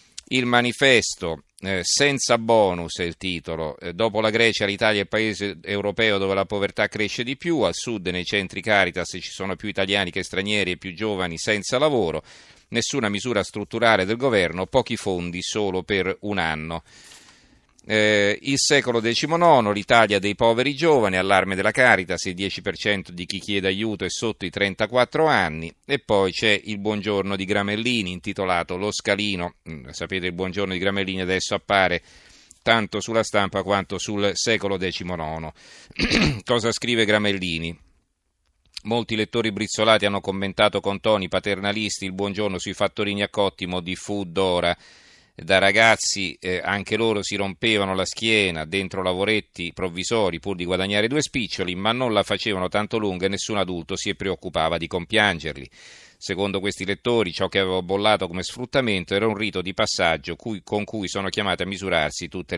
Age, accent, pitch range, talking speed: 40-59, native, 95-110 Hz, 160 wpm